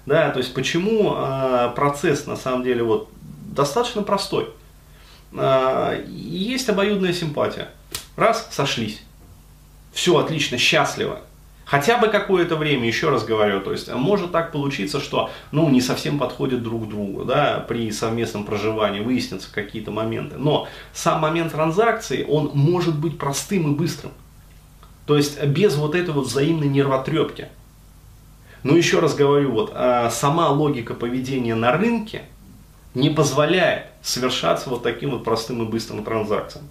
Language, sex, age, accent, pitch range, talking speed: Russian, male, 30-49, native, 115-155 Hz, 140 wpm